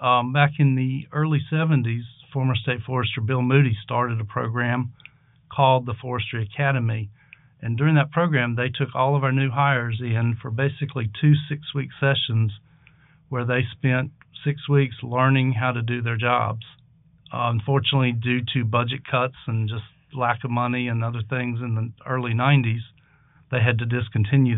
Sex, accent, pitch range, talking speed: male, American, 120-140 Hz, 165 wpm